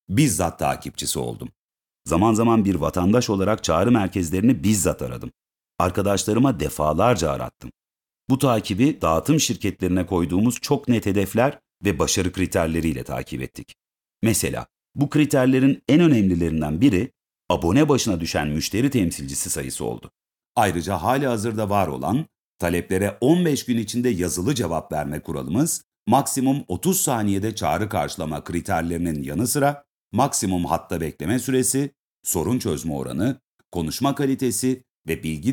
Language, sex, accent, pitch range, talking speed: Turkish, male, native, 85-125 Hz, 120 wpm